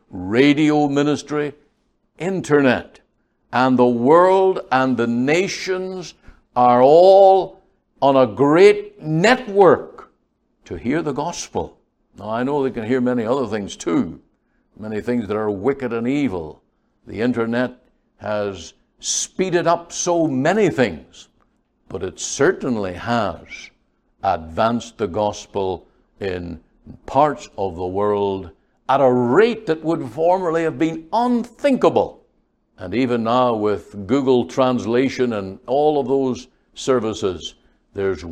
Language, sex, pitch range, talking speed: English, male, 105-150 Hz, 120 wpm